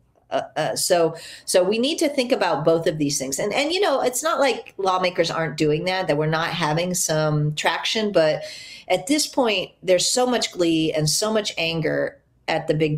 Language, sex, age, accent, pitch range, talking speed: English, female, 40-59, American, 145-190 Hz, 210 wpm